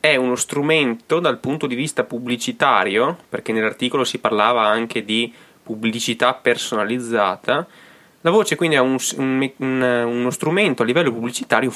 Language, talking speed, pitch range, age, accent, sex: Italian, 130 wpm, 110-130 Hz, 20-39, native, male